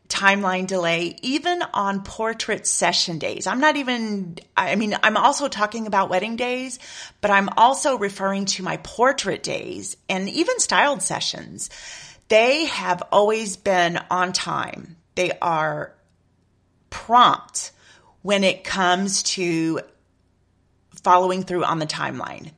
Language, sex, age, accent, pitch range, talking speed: English, female, 30-49, American, 175-220 Hz, 130 wpm